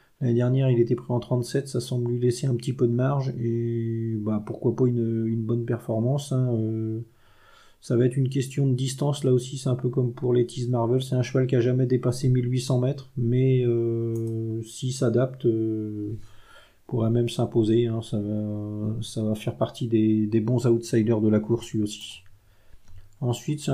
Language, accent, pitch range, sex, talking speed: French, French, 115-135 Hz, male, 200 wpm